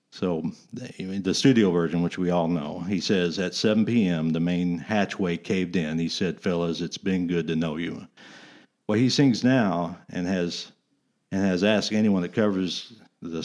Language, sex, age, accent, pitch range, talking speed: English, male, 50-69, American, 85-105 Hz, 185 wpm